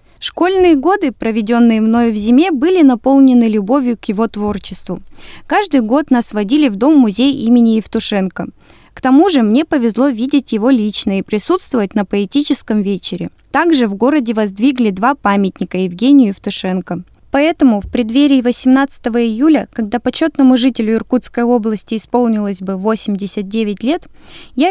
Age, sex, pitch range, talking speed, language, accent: 20-39, female, 210-275 Hz, 135 wpm, Russian, native